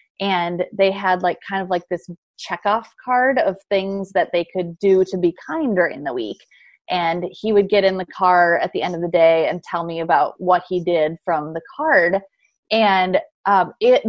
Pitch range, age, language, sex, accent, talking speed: 180-220 Hz, 30-49, English, female, American, 205 wpm